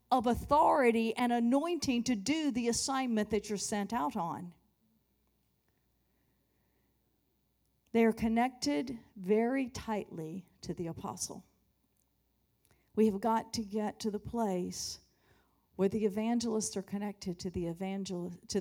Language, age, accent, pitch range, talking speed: English, 50-69, American, 175-225 Hz, 120 wpm